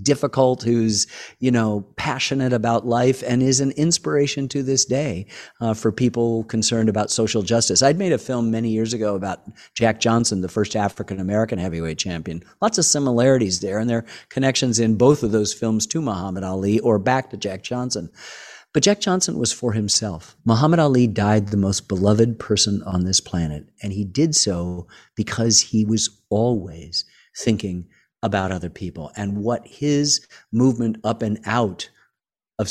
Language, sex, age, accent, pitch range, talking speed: English, male, 50-69, American, 100-125 Hz, 170 wpm